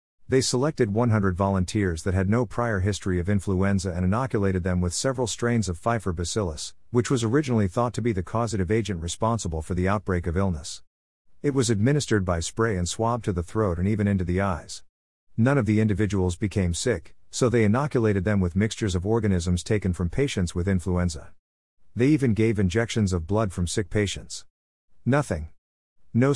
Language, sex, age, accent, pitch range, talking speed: English, male, 50-69, American, 90-115 Hz, 180 wpm